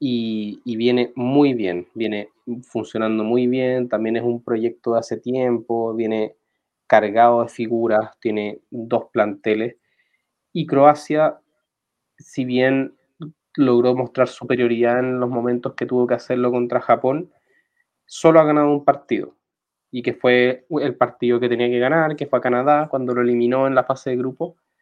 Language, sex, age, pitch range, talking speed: Spanish, male, 20-39, 115-135 Hz, 155 wpm